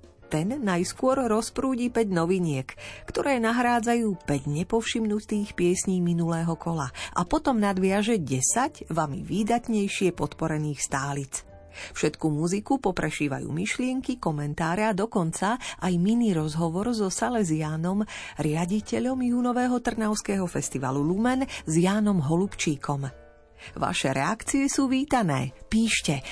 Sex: female